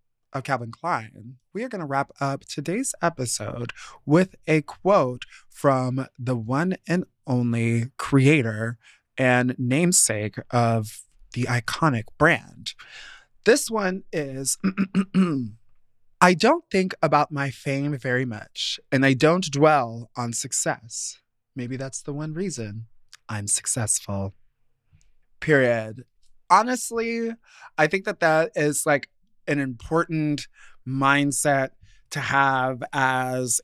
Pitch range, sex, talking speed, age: 125-155 Hz, male, 115 wpm, 20-39